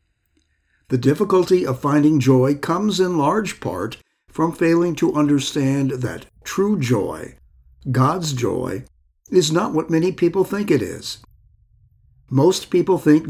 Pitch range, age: 105-160 Hz, 60-79